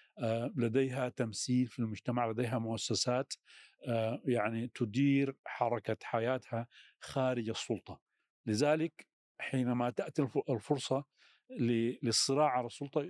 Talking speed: 85 wpm